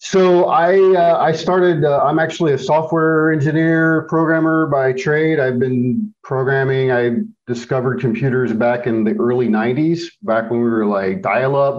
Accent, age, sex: American, 50-69, male